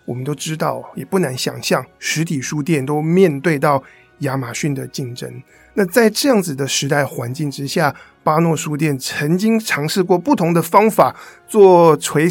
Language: Chinese